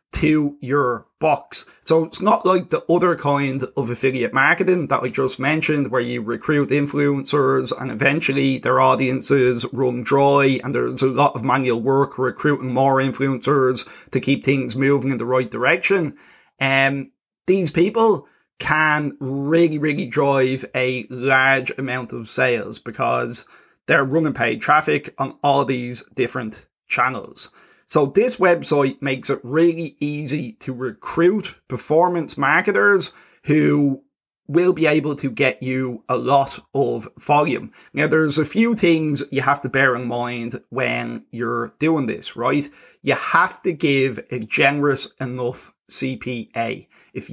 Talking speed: 145 wpm